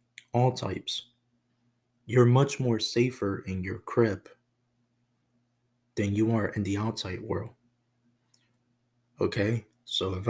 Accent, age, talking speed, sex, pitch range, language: American, 20-39, 110 wpm, male, 110-120 Hz, English